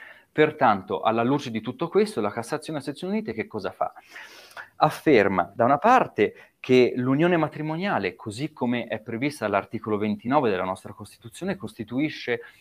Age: 30-49